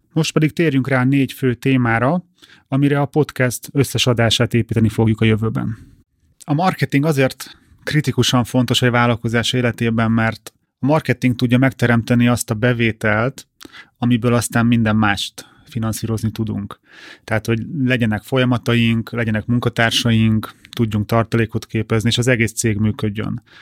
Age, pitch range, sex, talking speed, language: 30-49, 115-130 Hz, male, 130 wpm, Hungarian